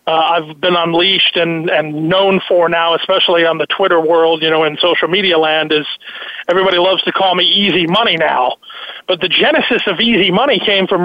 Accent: American